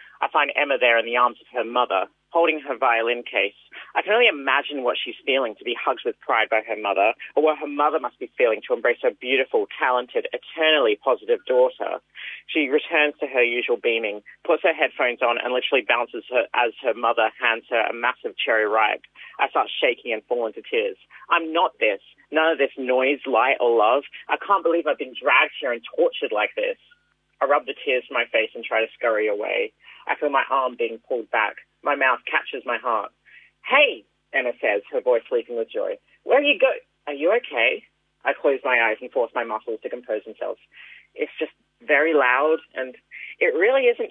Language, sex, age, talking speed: English, male, 40-59, 205 wpm